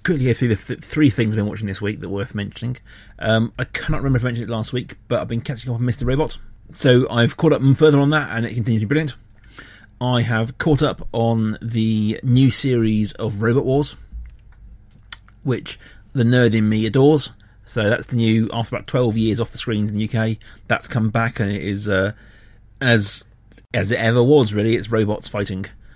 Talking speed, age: 215 wpm, 30-49